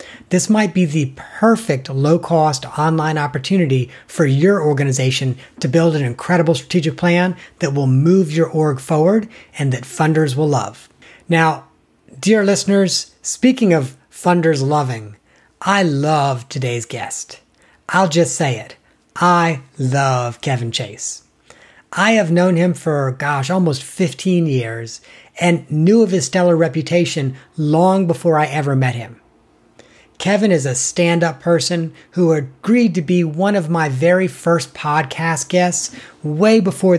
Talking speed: 140 wpm